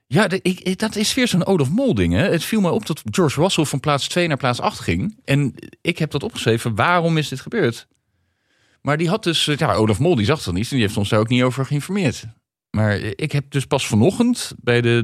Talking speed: 225 wpm